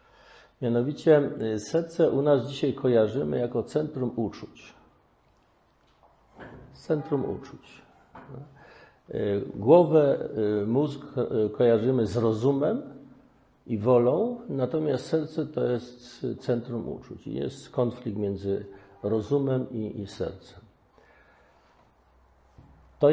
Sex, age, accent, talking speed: male, 50-69, native, 85 wpm